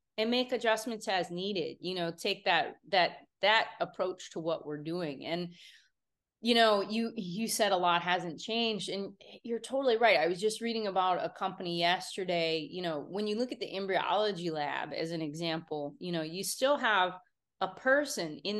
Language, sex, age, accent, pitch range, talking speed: English, female, 30-49, American, 185-230 Hz, 185 wpm